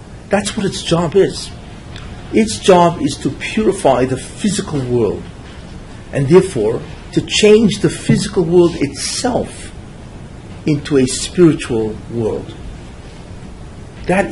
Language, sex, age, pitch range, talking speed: English, male, 50-69, 120-185 Hz, 110 wpm